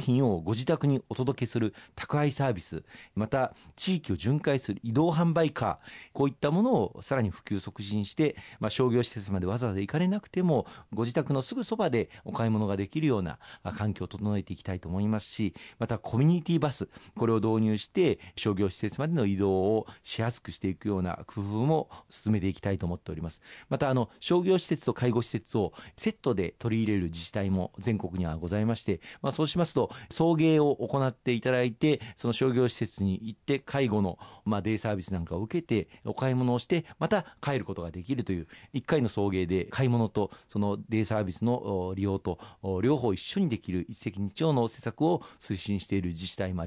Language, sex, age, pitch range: Japanese, male, 40-59, 95-130 Hz